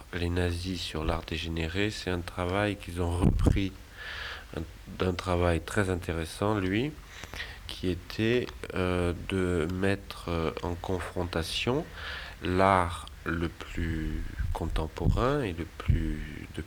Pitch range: 80-95 Hz